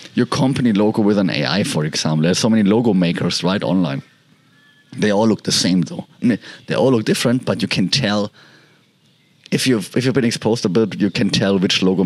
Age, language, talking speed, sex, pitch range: 30-49, English, 210 wpm, male, 95-130 Hz